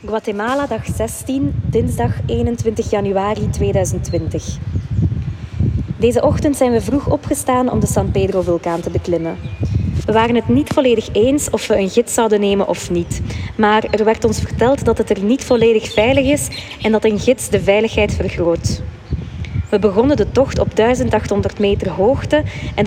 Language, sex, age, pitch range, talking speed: Dutch, female, 20-39, 165-230 Hz, 165 wpm